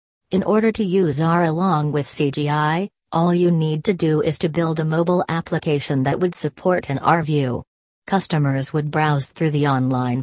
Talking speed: 180 wpm